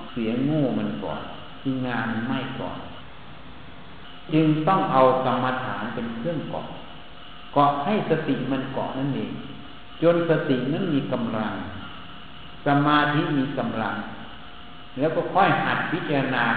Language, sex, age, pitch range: Thai, male, 60-79, 120-155 Hz